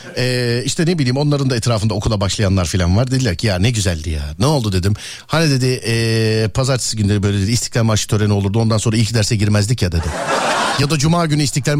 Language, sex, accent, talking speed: Turkish, male, native, 220 wpm